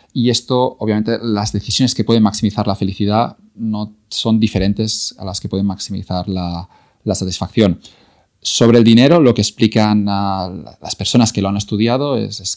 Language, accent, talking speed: Spanish, Spanish, 170 wpm